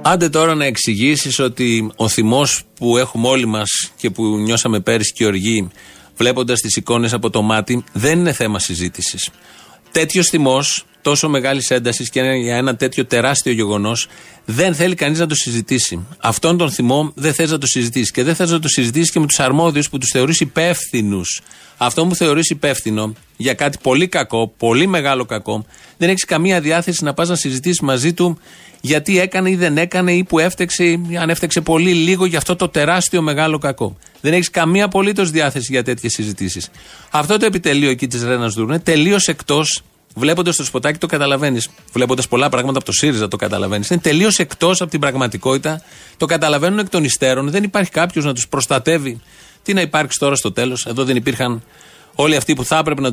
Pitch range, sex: 125-165 Hz, male